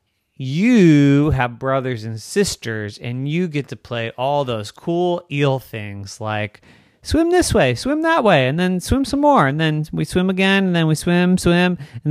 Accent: American